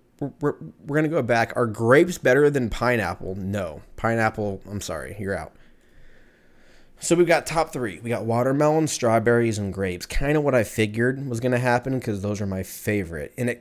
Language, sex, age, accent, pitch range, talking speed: English, male, 20-39, American, 95-125 Hz, 195 wpm